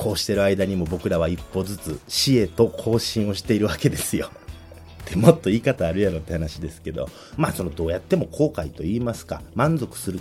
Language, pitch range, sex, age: Japanese, 85-140 Hz, male, 40-59